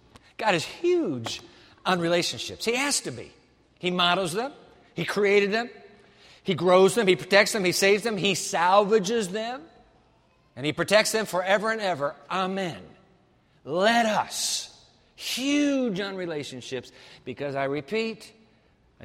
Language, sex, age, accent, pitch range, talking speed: English, male, 50-69, American, 145-220 Hz, 140 wpm